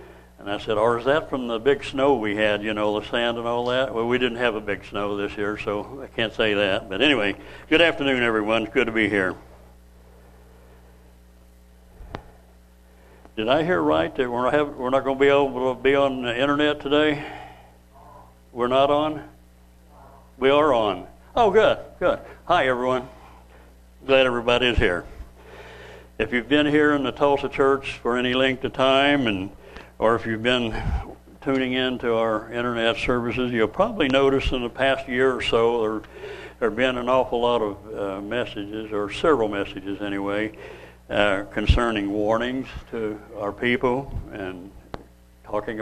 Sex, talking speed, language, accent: male, 170 wpm, English, American